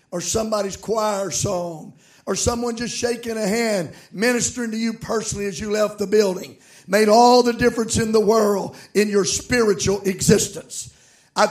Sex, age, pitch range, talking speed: male, 50-69, 205-245 Hz, 160 wpm